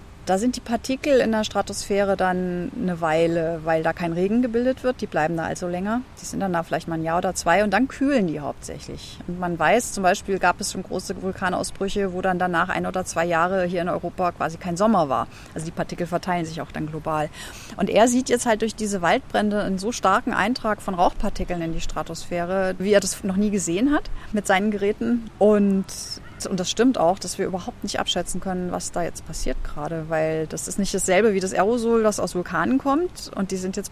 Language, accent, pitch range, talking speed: German, German, 175-225 Hz, 225 wpm